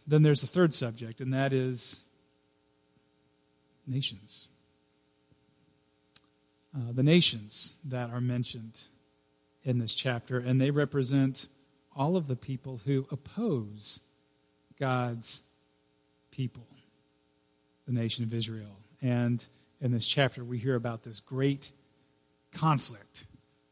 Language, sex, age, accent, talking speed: English, male, 40-59, American, 110 wpm